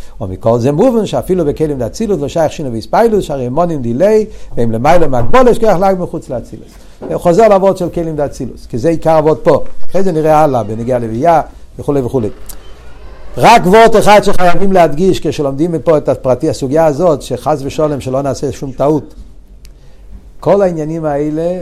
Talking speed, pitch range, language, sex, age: 170 wpm, 105-155 Hz, Hebrew, male, 60-79